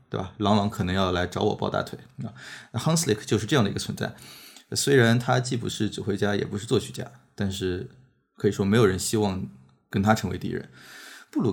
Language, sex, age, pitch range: Chinese, male, 20-39, 105-125 Hz